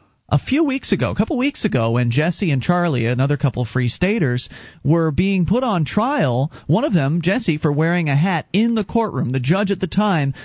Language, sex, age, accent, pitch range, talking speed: English, male, 40-59, American, 130-180 Hz, 210 wpm